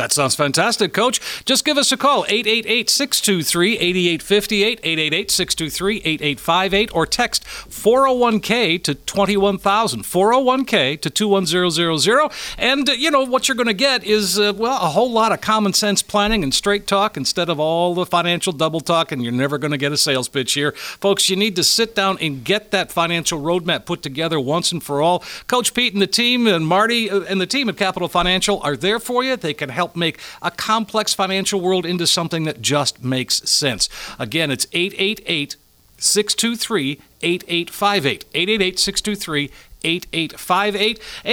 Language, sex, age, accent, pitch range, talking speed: English, male, 50-69, American, 165-215 Hz, 160 wpm